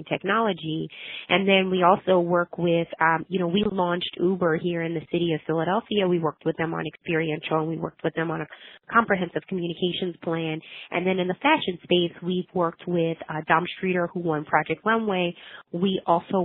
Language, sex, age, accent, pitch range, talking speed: English, female, 30-49, American, 165-190 Hz, 195 wpm